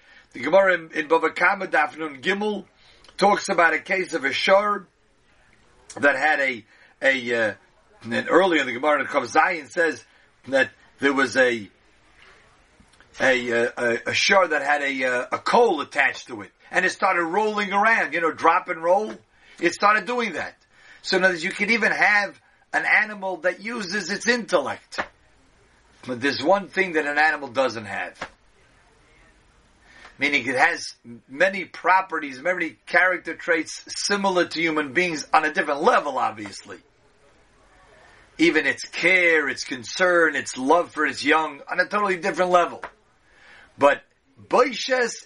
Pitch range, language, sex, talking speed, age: 140-195 Hz, English, male, 150 wpm, 50-69